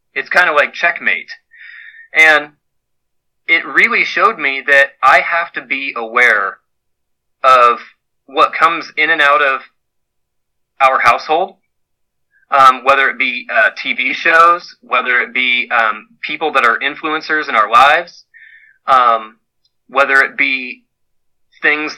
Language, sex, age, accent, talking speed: English, male, 20-39, American, 130 wpm